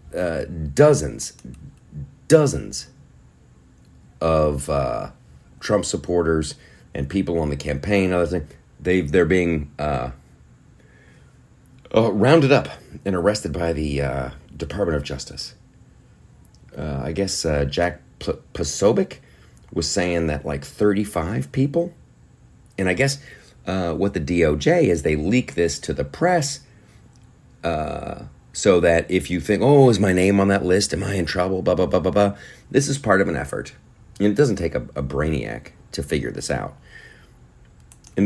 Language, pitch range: English, 70-100 Hz